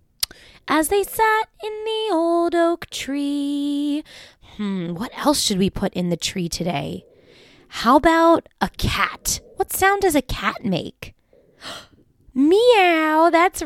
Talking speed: 130 wpm